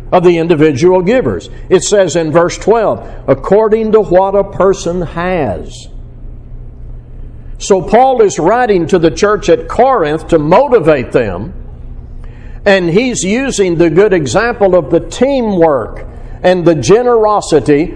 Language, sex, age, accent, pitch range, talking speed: English, male, 60-79, American, 155-205 Hz, 130 wpm